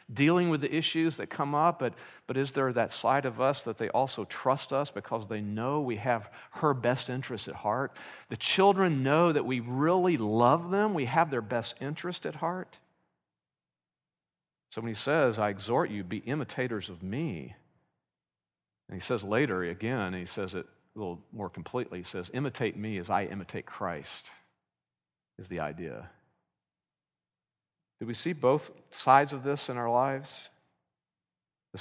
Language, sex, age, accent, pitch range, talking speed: English, male, 50-69, American, 105-140 Hz, 170 wpm